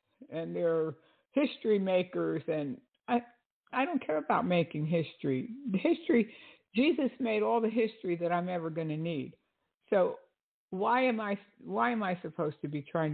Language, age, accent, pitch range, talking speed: English, 60-79, American, 165-225 Hz, 160 wpm